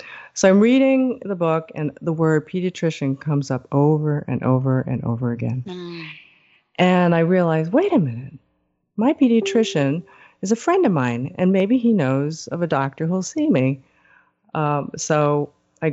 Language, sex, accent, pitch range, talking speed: English, female, American, 135-175 Hz, 160 wpm